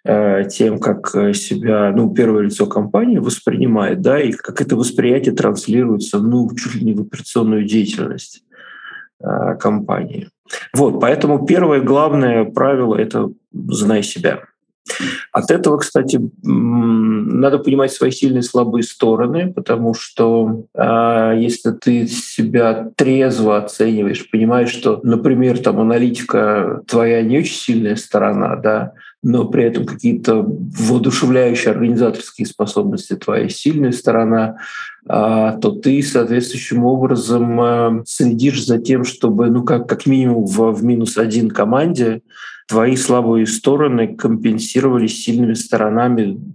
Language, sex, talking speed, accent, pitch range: Russian, male, 120 wpm, native, 110-125 Hz